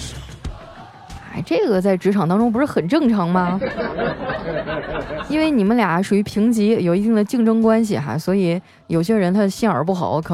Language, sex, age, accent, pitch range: Chinese, female, 20-39, native, 170-225 Hz